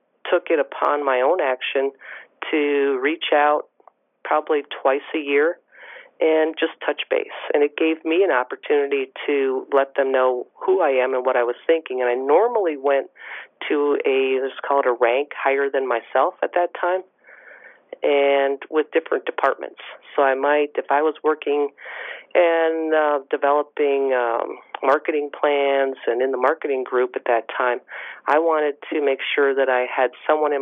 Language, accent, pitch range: English, American, 130-165 Hz